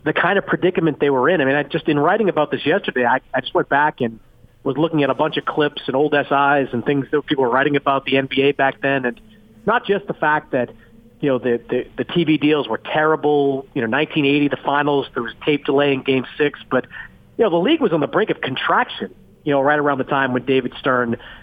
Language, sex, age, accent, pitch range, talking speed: English, male, 40-59, American, 130-165 Hz, 250 wpm